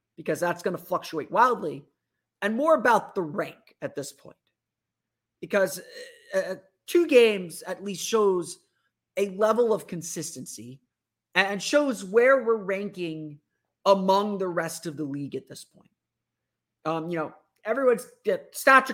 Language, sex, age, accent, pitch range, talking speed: English, male, 30-49, American, 165-220 Hz, 140 wpm